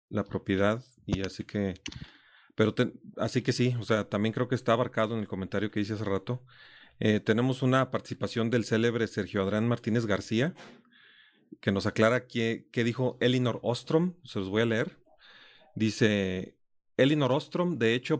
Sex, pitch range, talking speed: male, 105-125 Hz, 170 wpm